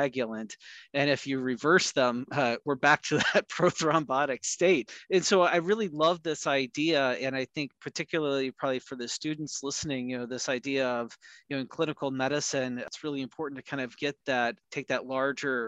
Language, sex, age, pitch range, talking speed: English, male, 30-49, 130-155 Hz, 190 wpm